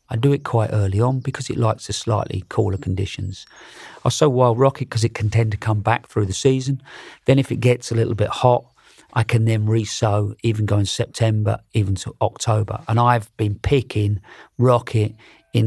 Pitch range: 105-125 Hz